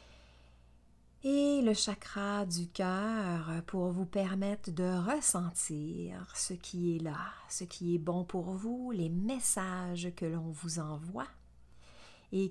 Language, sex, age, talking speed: French, female, 40-59, 130 wpm